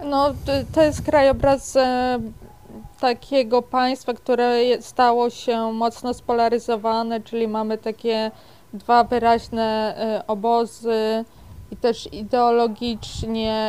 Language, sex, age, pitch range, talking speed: Polish, female, 20-39, 220-245 Hz, 90 wpm